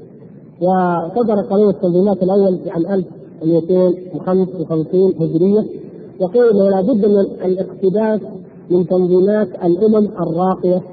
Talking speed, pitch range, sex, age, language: 95 wpm, 180-215 Hz, male, 50-69, Arabic